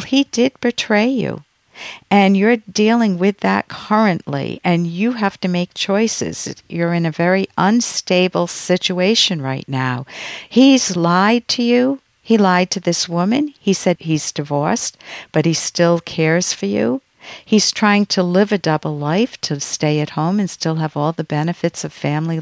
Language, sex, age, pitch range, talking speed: English, female, 50-69, 155-205 Hz, 165 wpm